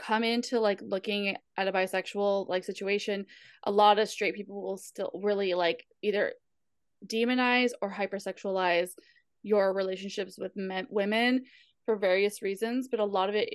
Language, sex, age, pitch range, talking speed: English, female, 20-39, 200-255 Hz, 155 wpm